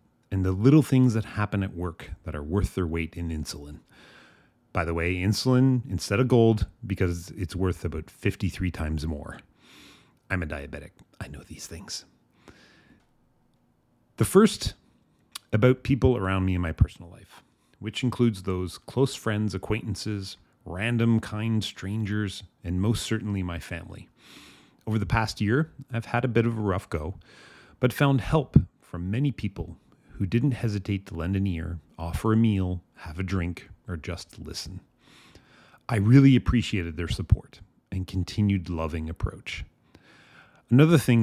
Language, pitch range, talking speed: English, 90-115 Hz, 155 wpm